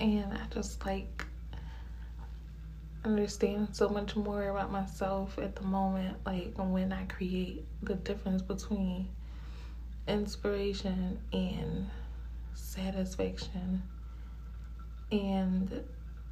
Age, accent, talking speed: 20-39, American, 90 wpm